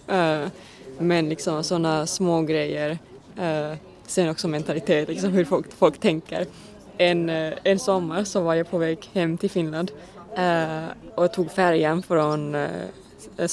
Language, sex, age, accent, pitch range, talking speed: Swedish, female, 20-39, native, 165-195 Hz, 145 wpm